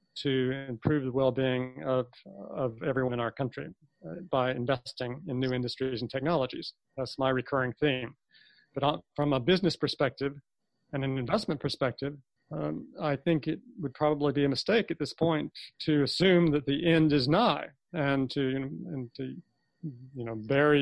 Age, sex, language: 40-59, male, English